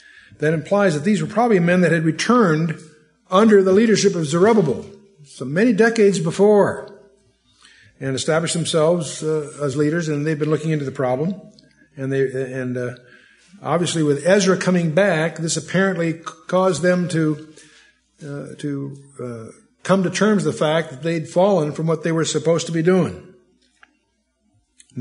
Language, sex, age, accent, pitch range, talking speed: English, male, 60-79, American, 135-180 Hz, 160 wpm